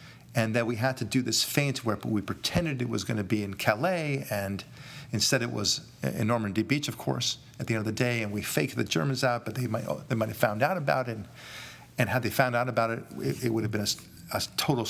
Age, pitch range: 40-59, 105-125 Hz